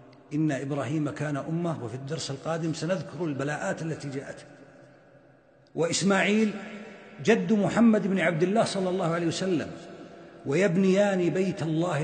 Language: Arabic